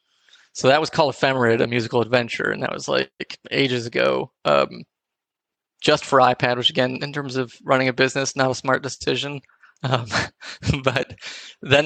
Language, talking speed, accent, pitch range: English, 165 wpm, American, 125-140 Hz